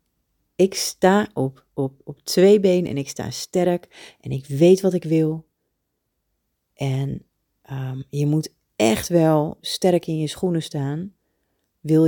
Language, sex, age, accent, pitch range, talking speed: Dutch, female, 30-49, Dutch, 135-185 Hz, 145 wpm